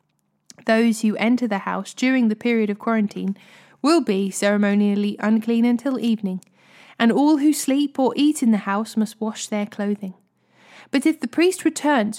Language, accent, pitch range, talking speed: English, British, 205-250 Hz, 165 wpm